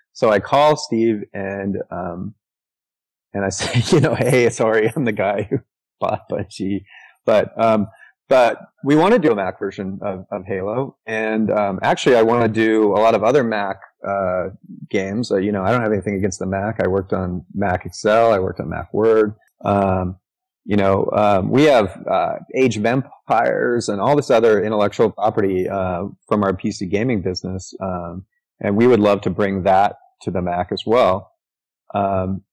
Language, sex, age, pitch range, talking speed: English, male, 30-49, 95-115 Hz, 190 wpm